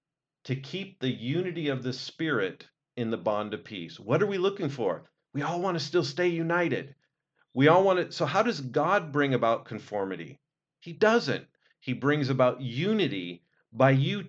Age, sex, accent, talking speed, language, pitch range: 40-59, male, American, 180 wpm, English, 120-155 Hz